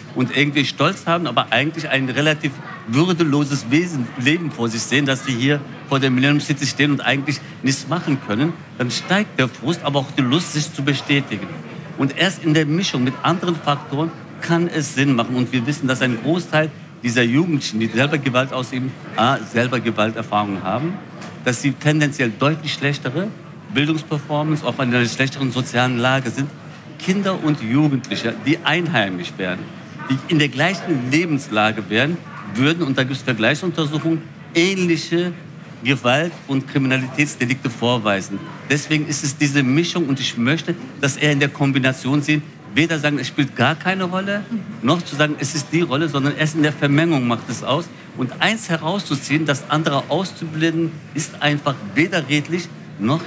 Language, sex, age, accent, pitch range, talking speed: German, male, 50-69, German, 130-160 Hz, 165 wpm